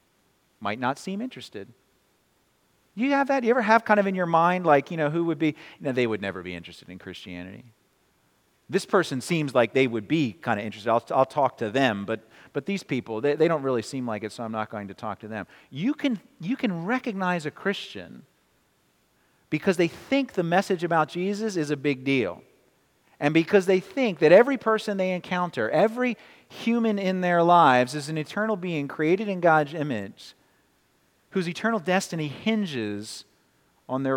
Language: English